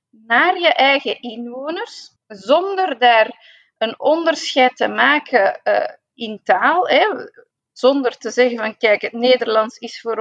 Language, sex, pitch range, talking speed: Dutch, female, 215-280 Hz, 125 wpm